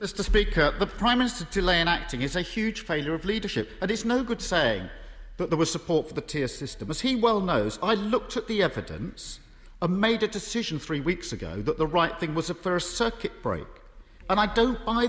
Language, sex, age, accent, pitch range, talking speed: English, male, 50-69, British, 145-205 Hz, 225 wpm